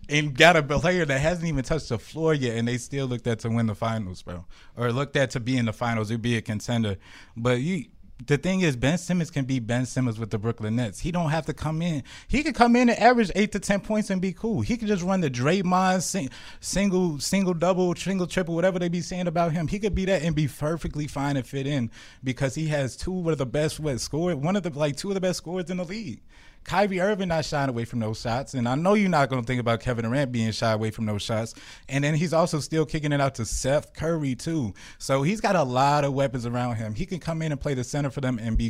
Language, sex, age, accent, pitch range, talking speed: English, male, 20-39, American, 125-170 Hz, 270 wpm